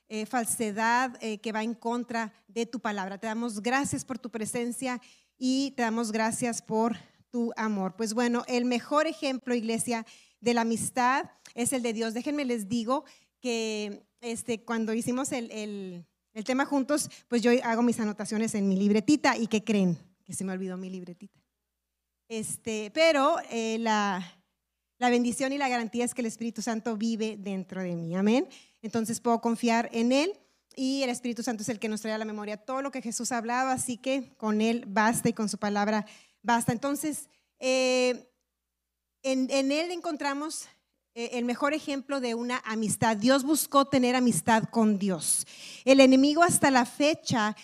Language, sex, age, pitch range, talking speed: Spanish, female, 30-49, 220-260 Hz, 180 wpm